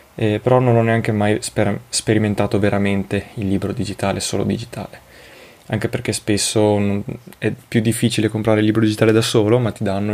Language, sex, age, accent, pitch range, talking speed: Italian, male, 20-39, native, 100-115 Hz, 170 wpm